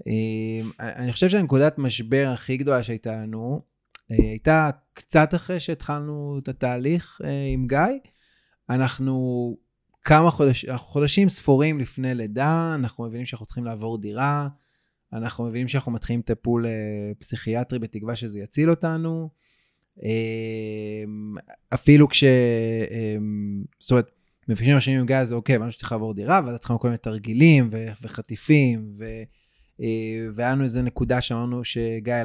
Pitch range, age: 115-145 Hz, 20-39